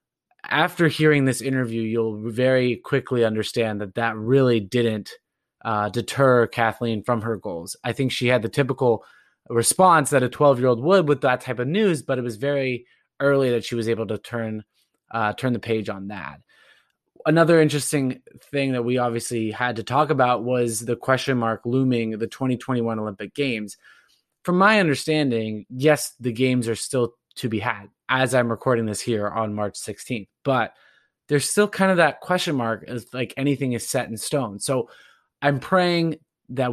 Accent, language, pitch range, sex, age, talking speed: American, English, 115-135 Hz, male, 20-39, 175 wpm